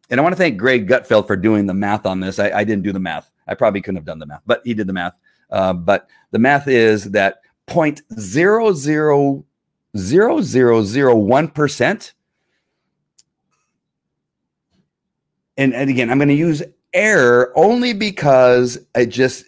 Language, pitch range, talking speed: English, 100-135 Hz, 155 wpm